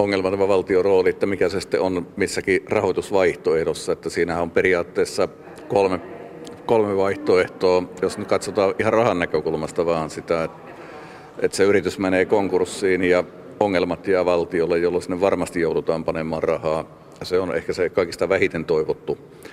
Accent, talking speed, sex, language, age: native, 150 wpm, male, Finnish, 50-69